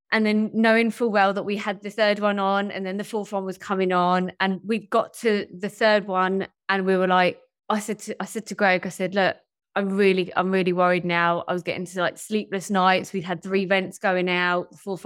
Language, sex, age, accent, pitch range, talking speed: English, female, 20-39, British, 180-220 Hz, 245 wpm